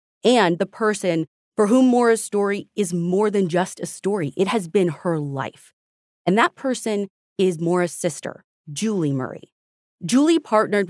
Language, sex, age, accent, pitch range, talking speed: English, female, 30-49, American, 160-220 Hz, 155 wpm